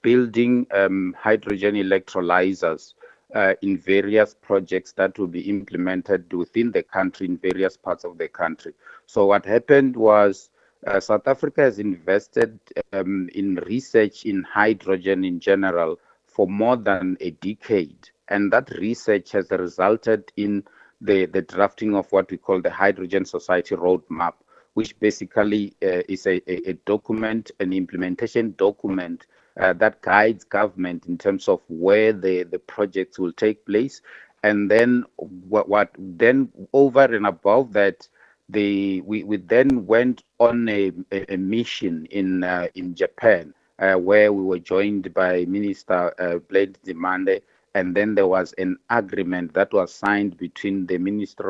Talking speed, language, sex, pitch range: 150 wpm, English, male, 95-105 Hz